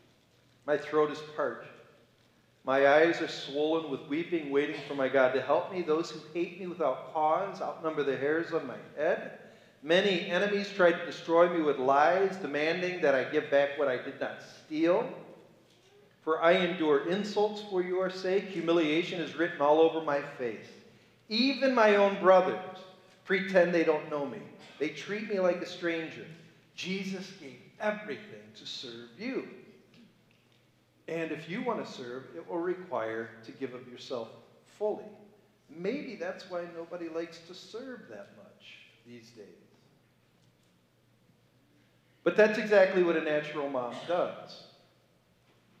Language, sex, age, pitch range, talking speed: English, male, 40-59, 135-180 Hz, 150 wpm